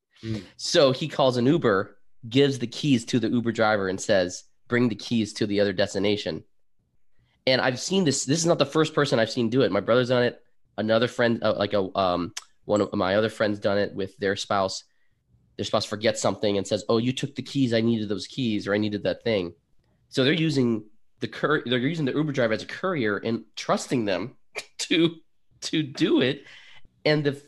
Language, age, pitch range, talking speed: English, 20-39, 100-125 Hz, 210 wpm